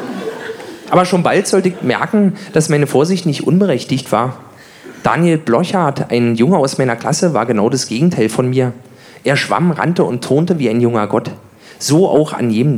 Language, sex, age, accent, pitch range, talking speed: German, male, 40-59, German, 130-175 Hz, 180 wpm